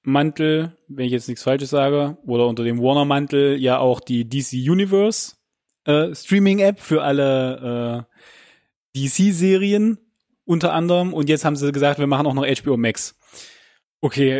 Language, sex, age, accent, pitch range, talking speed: German, male, 20-39, German, 135-170 Hz, 150 wpm